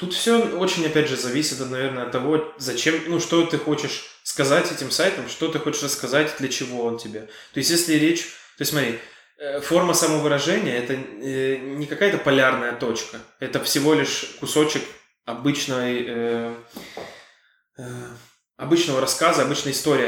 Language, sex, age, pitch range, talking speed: Russian, male, 20-39, 130-155 Hz, 135 wpm